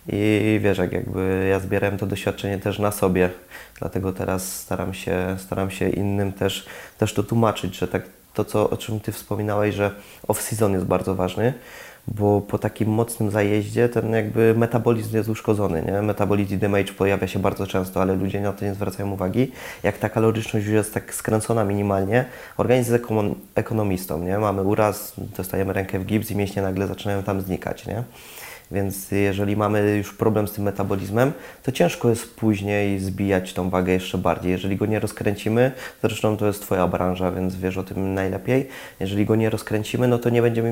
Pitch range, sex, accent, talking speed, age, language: 95-110 Hz, male, native, 185 wpm, 20-39, Polish